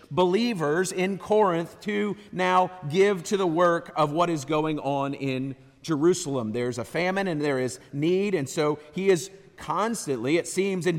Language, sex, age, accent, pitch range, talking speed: English, male, 40-59, American, 140-185 Hz, 170 wpm